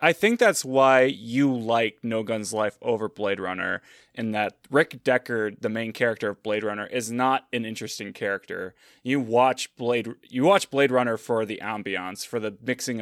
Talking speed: 185 wpm